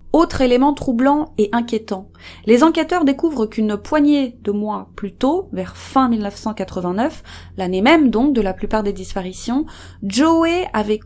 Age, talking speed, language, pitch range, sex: 30-49, 145 wpm, French, 200-255 Hz, female